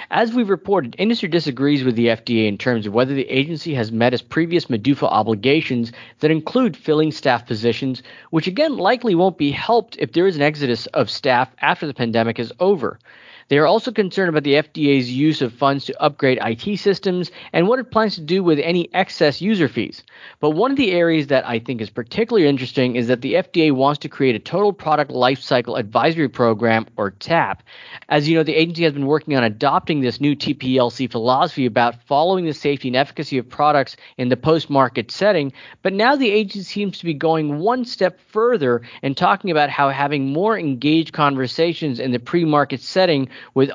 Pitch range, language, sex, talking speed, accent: 125-165 Hz, English, male, 200 wpm, American